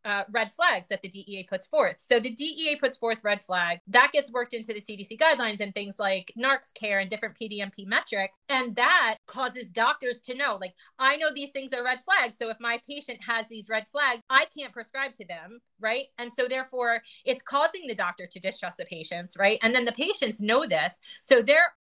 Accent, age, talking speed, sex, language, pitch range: American, 30-49, 215 wpm, female, English, 210-255 Hz